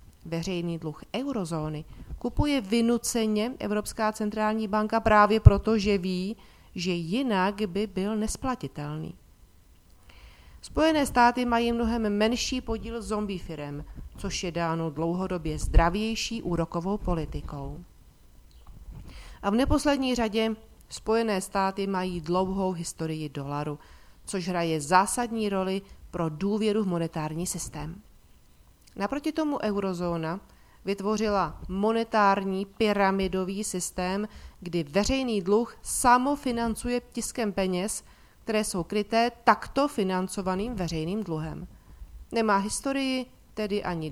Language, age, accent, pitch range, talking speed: Czech, 40-59, native, 165-220 Hz, 100 wpm